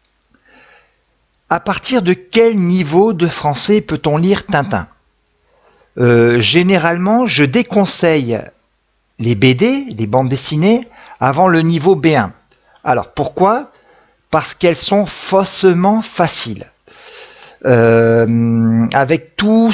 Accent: French